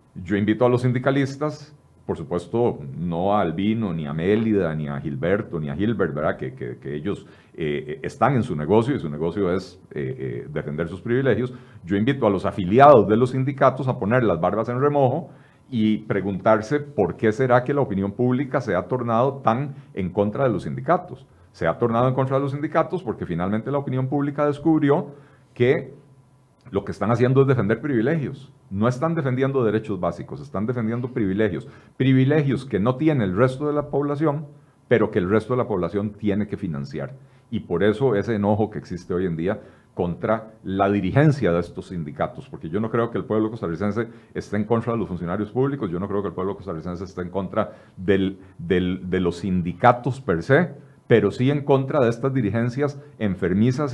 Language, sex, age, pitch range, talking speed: Spanish, male, 40-59, 100-135 Hz, 190 wpm